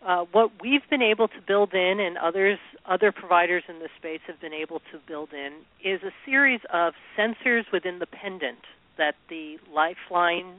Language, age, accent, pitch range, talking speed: English, 40-59, American, 160-215 Hz, 180 wpm